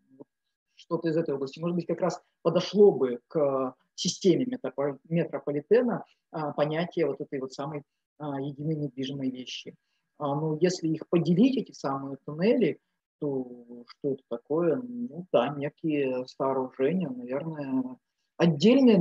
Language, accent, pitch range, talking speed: Russian, native, 135-175 Hz, 135 wpm